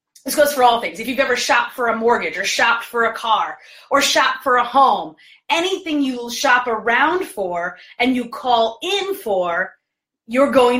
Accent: American